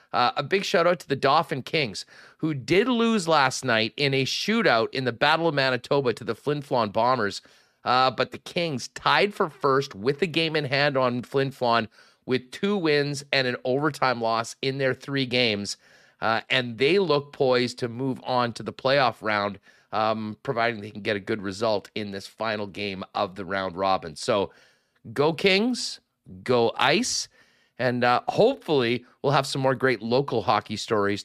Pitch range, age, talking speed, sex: 115-145 Hz, 30-49, 180 wpm, male